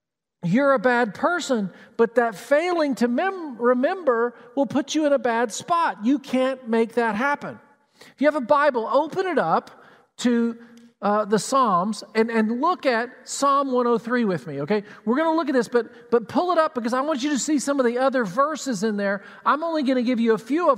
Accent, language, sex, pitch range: American, English, male, 230-280 Hz